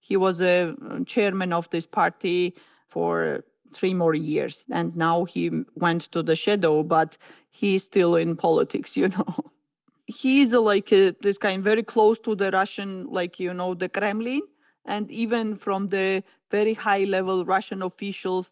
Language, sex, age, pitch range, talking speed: English, female, 40-59, 180-210 Hz, 160 wpm